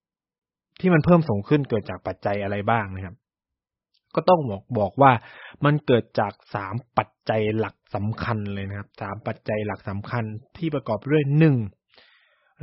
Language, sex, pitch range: Thai, male, 105-135 Hz